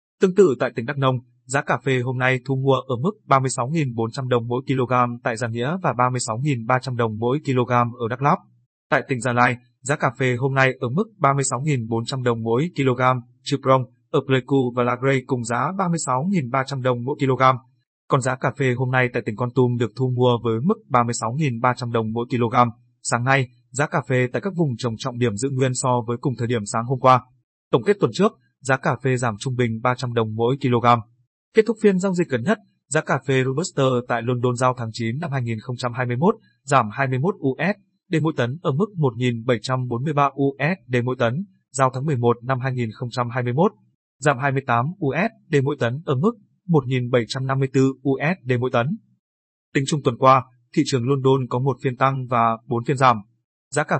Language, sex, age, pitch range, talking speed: Vietnamese, male, 20-39, 120-140 Hz, 190 wpm